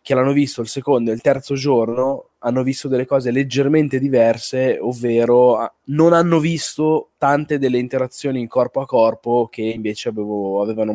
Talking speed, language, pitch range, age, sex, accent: 160 wpm, Italian, 110-130 Hz, 20-39, male, native